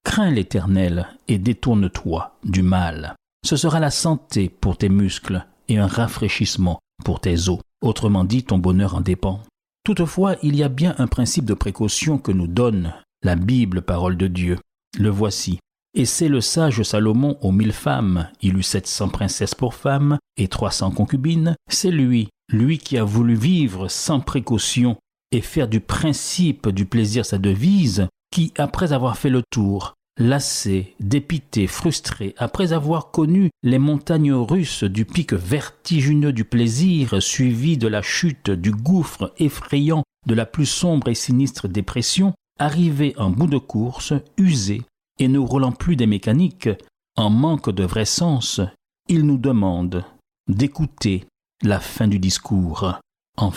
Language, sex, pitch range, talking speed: French, male, 100-145 Hz, 155 wpm